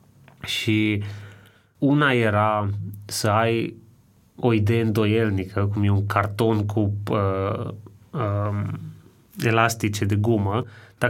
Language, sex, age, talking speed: Romanian, male, 30-49, 105 wpm